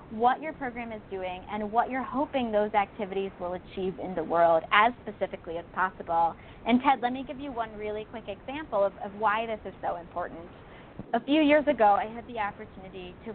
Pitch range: 195-250 Hz